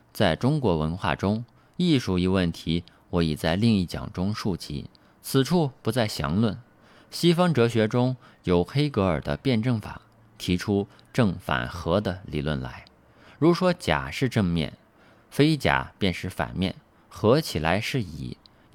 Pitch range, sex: 90-135 Hz, male